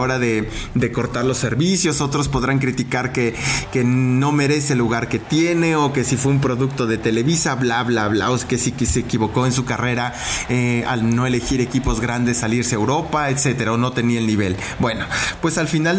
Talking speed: 215 wpm